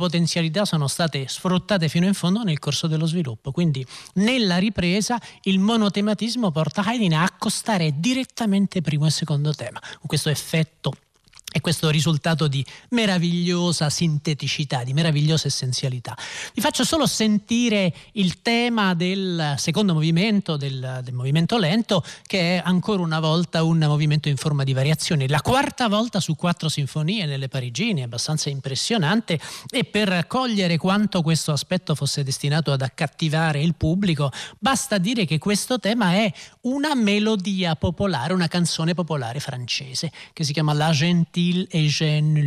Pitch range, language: 150-200 Hz, Italian